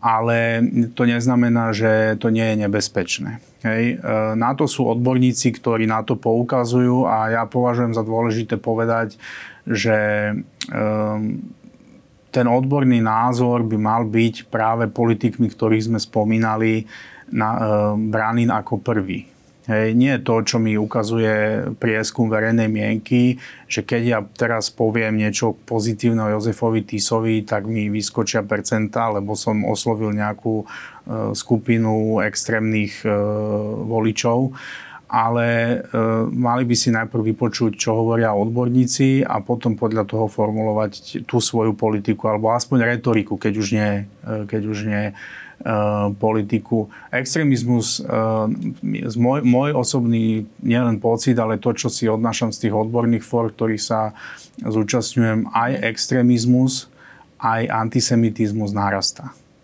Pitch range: 110-120 Hz